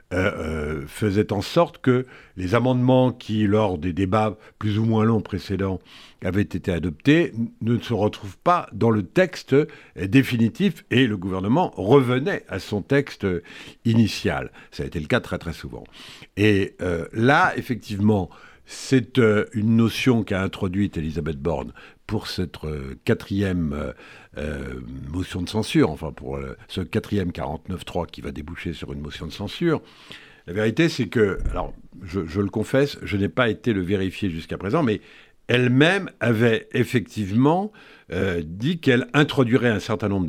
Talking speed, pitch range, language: 160 wpm, 90-125 Hz, French